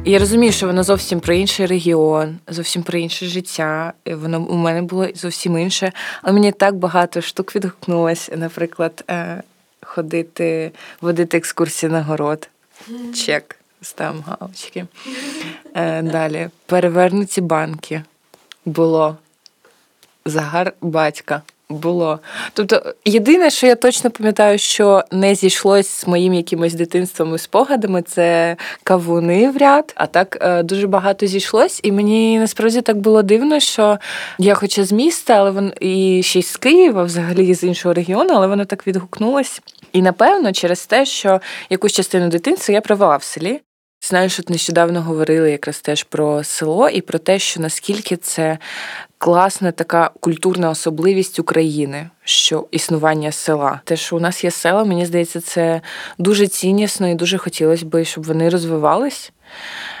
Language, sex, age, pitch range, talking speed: Ukrainian, female, 20-39, 165-200 Hz, 140 wpm